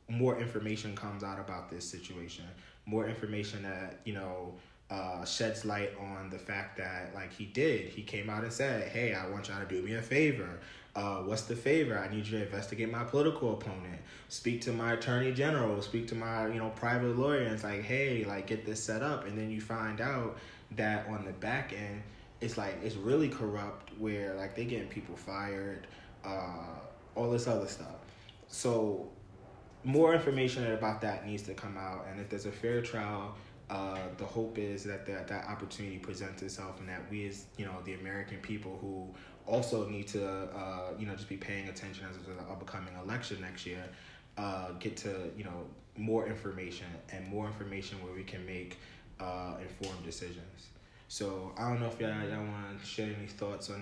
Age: 20-39